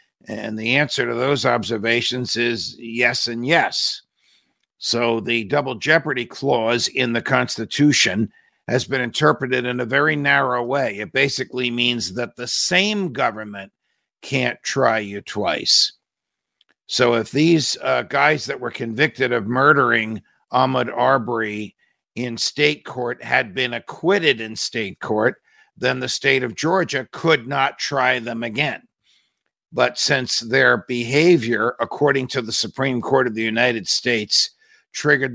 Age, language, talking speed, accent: 50-69, English, 140 wpm, American